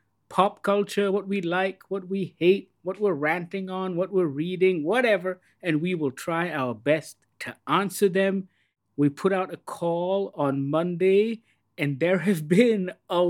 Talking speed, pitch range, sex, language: 165 wpm, 140-195 Hz, male, English